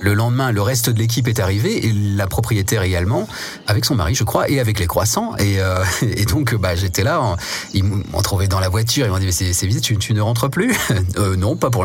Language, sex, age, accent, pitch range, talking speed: French, male, 40-59, French, 105-130 Hz, 250 wpm